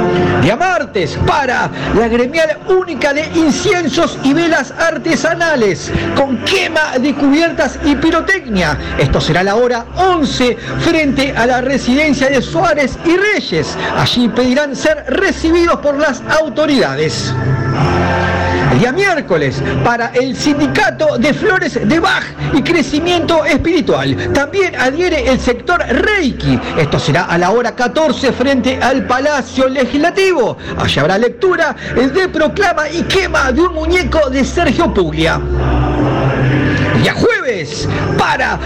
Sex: male